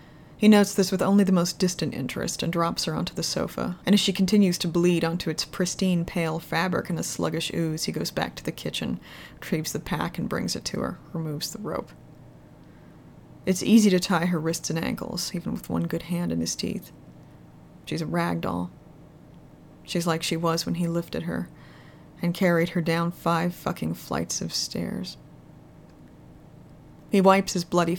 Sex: female